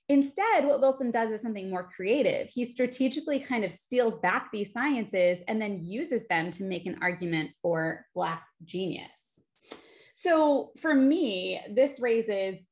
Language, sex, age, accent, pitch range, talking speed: English, female, 20-39, American, 185-270 Hz, 150 wpm